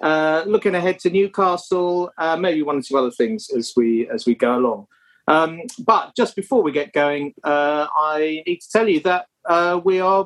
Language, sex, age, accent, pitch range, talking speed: English, male, 40-59, British, 145-205 Hz, 205 wpm